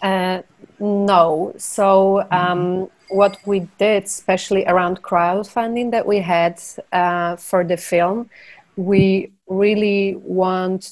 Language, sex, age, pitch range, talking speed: English, female, 30-49, 180-195 Hz, 110 wpm